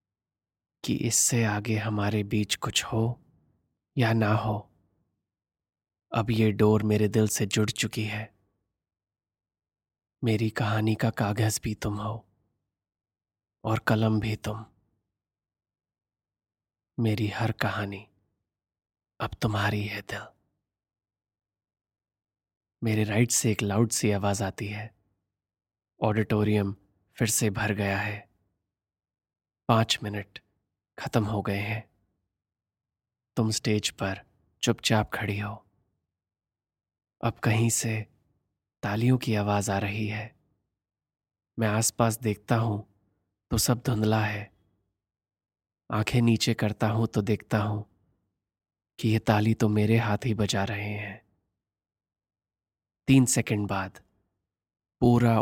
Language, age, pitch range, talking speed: Hindi, 30-49, 100-110 Hz, 110 wpm